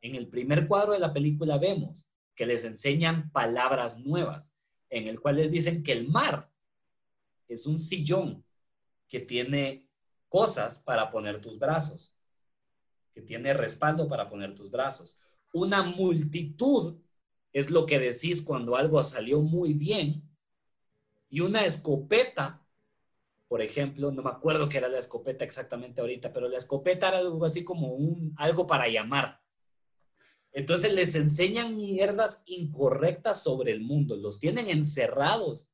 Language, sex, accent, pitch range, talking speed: Spanish, male, Mexican, 135-175 Hz, 145 wpm